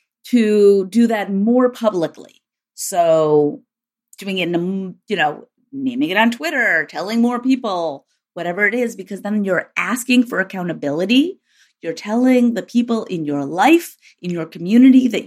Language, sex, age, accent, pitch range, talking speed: English, female, 30-49, American, 170-245 Hz, 145 wpm